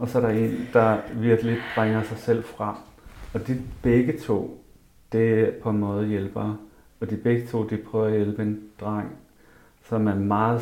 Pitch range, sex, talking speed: 105-120 Hz, male, 190 wpm